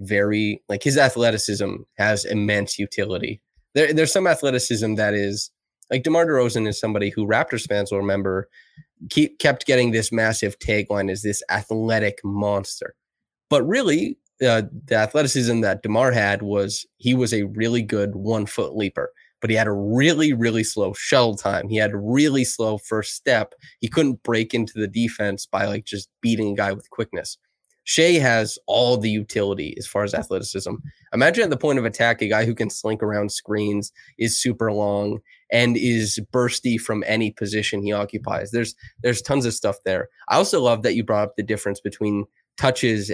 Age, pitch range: 20-39, 100-120 Hz